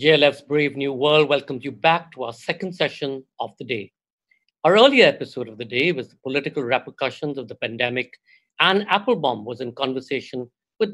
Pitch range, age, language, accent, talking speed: 125-175 Hz, 50-69, Hindi, native, 185 wpm